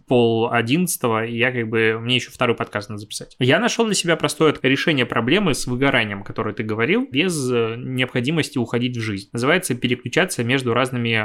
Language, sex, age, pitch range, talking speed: Russian, male, 20-39, 115-135 Hz, 170 wpm